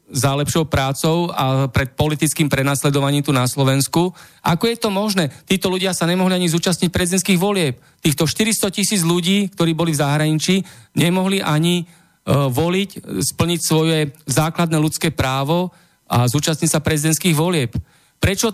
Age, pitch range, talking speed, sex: 40-59, 145-170 Hz, 145 wpm, male